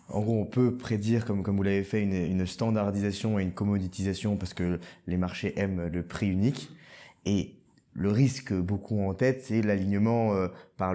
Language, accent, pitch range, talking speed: French, French, 95-115 Hz, 185 wpm